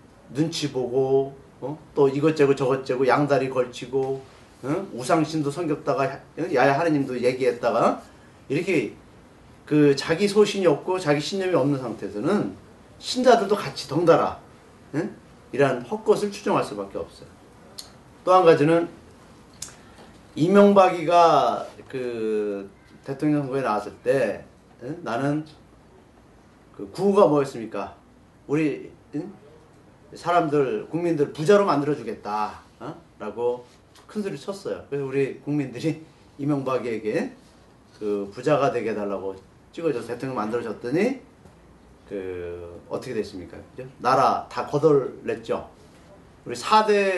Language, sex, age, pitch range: Korean, male, 40-59, 120-170 Hz